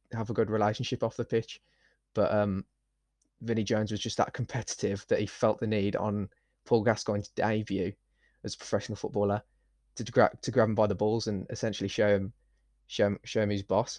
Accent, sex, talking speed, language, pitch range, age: British, male, 195 wpm, English, 100-115 Hz, 20-39